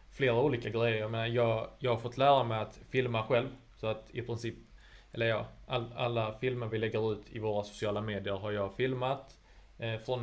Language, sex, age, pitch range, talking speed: Swedish, male, 20-39, 110-120 Hz, 190 wpm